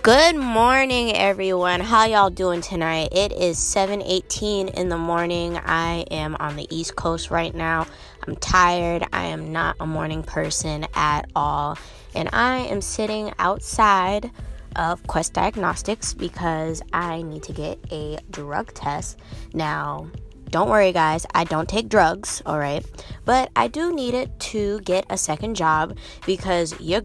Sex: female